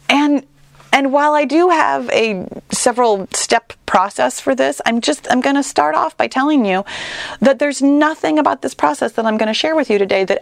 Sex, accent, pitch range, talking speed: female, American, 185-285 Hz, 215 wpm